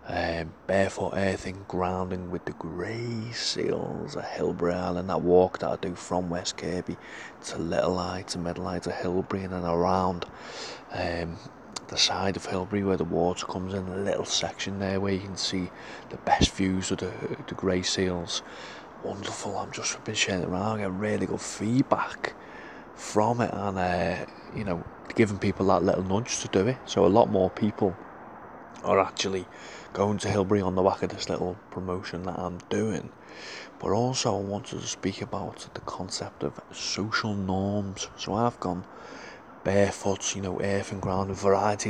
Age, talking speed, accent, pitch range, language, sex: 30-49, 180 wpm, British, 90-100 Hz, English, male